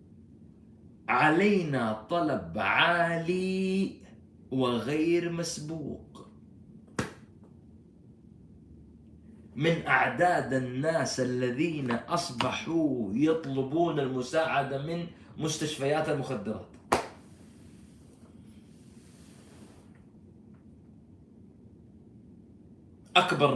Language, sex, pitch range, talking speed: Arabic, male, 120-155 Hz, 40 wpm